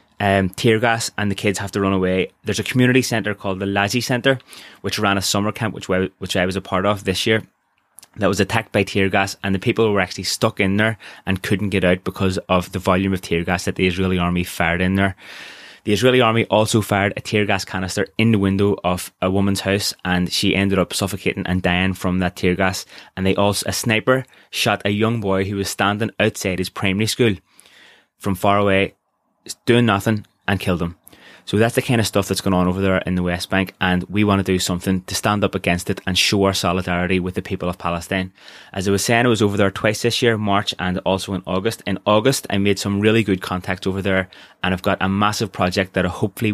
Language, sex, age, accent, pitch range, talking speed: English, male, 20-39, British, 95-105 Hz, 240 wpm